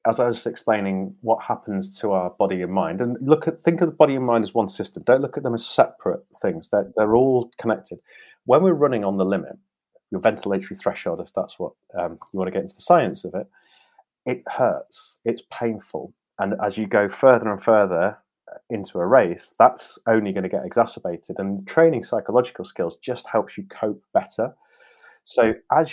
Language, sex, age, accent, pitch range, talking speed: English, male, 30-49, British, 95-125 Hz, 200 wpm